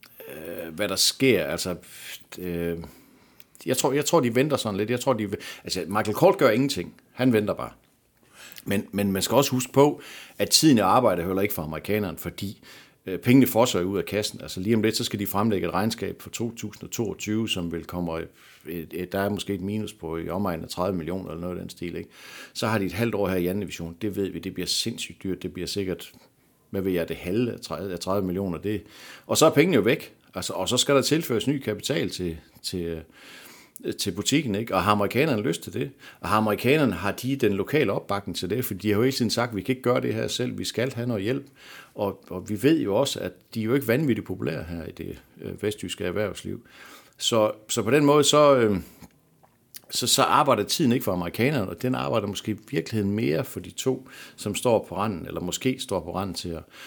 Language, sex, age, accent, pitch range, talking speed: Danish, male, 60-79, native, 90-115 Hz, 230 wpm